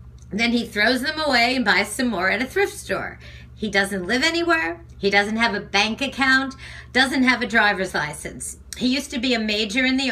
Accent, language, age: American, English, 50-69